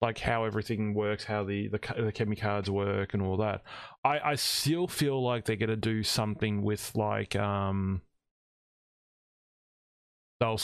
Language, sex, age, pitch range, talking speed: English, male, 20-39, 105-125 Hz, 160 wpm